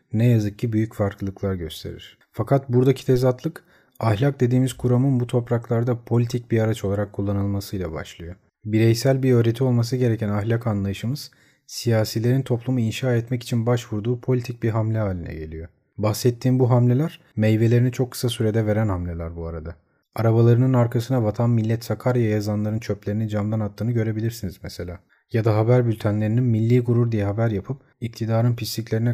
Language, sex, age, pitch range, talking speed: Turkish, male, 40-59, 110-125 Hz, 145 wpm